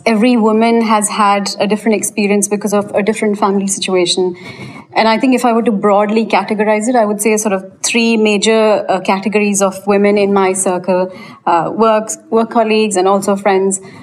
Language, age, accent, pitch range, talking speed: English, 30-49, Indian, 200-230 Hz, 190 wpm